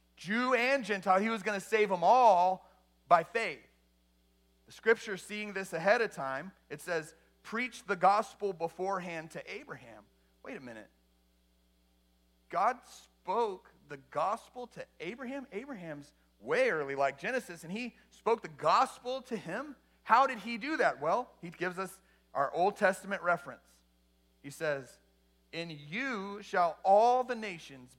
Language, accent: English, American